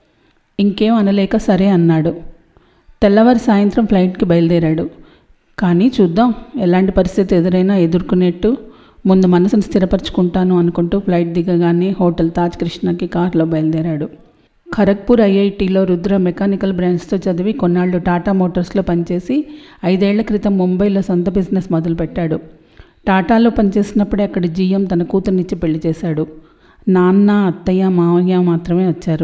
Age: 40-59